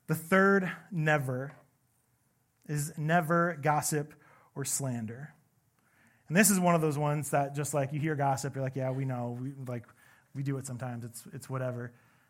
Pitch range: 140-165 Hz